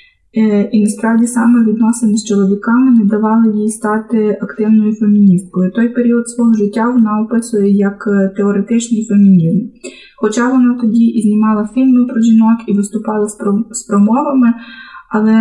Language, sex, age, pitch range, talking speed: Ukrainian, female, 20-39, 200-230 Hz, 130 wpm